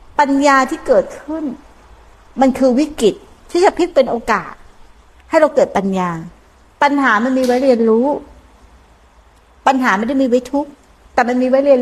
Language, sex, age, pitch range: Thai, female, 60-79, 215-285 Hz